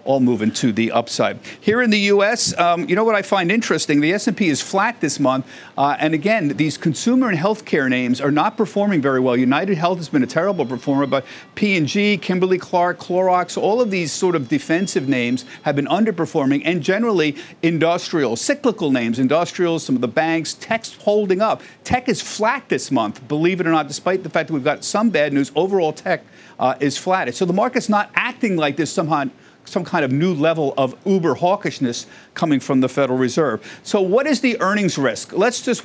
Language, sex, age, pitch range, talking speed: English, male, 50-69, 140-200 Hz, 205 wpm